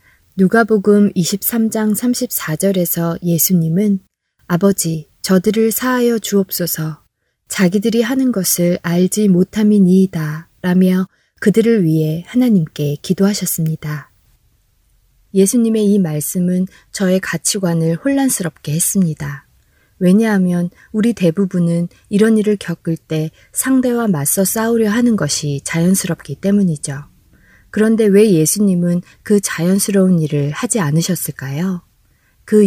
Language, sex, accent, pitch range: Korean, female, native, 165-210 Hz